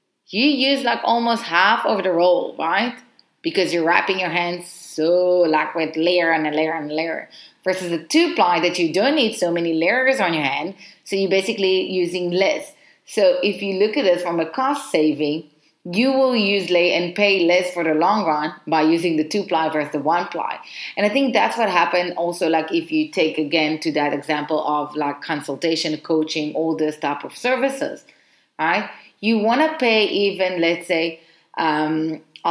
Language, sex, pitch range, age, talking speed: English, female, 165-220 Hz, 30-49, 195 wpm